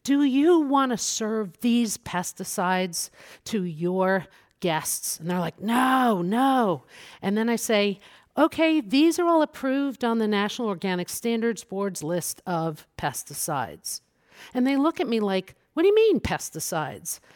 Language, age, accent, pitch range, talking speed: English, 50-69, American, 170-230 Hz, 150 wpm